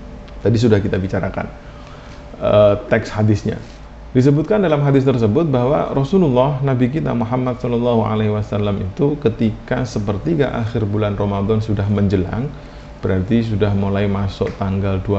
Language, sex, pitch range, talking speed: Indonesian, male, 100-125 Hz, 125 wpm